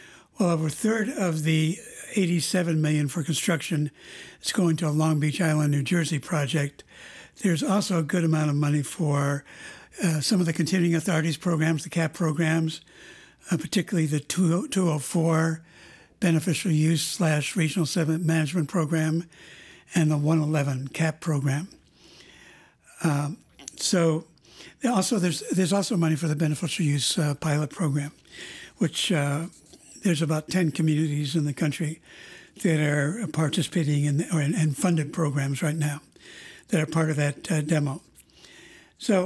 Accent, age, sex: American, 60-79, male